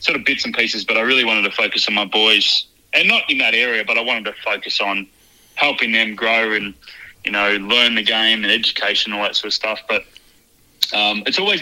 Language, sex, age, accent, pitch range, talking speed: English, male, 20-39, Australian, 100-120 Hz, 240 wpm